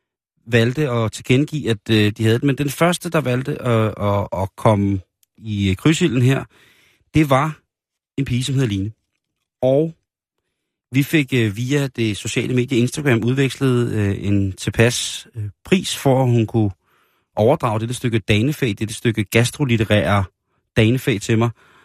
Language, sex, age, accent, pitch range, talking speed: Danish, male, 30-49, native, 110-135 Hz, 150 wpm